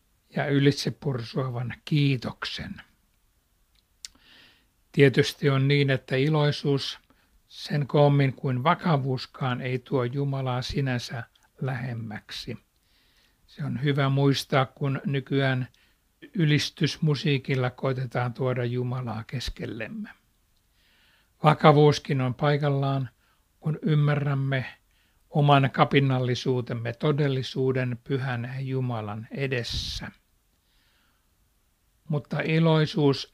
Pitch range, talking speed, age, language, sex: 125-145 Hz, 75 wpm, 60-79, Finnish, male